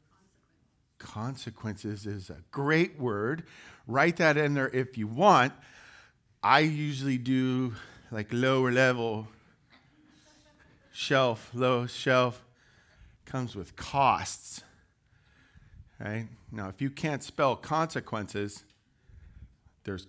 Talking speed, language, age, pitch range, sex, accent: 95 wpm, English, 40-59, 110-155 Hz, male, American